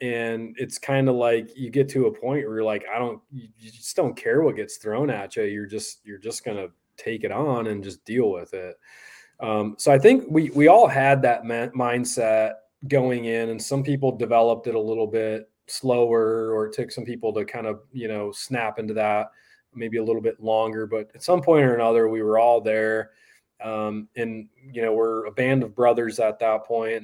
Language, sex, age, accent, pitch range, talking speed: English, male, 20-39, American, 110-135 Hz, 220 wpm